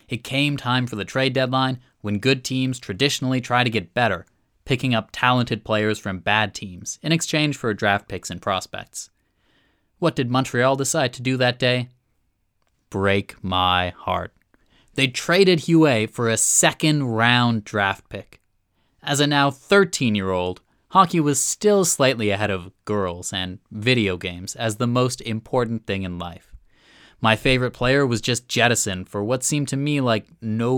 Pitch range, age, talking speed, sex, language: 100-135 Hz, 20-39, 160 wpm, male, English